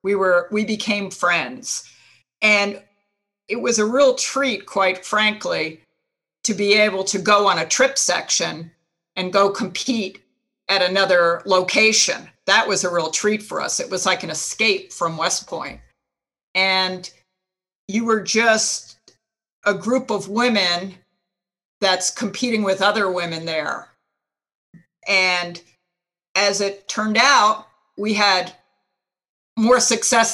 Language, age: English, 50-69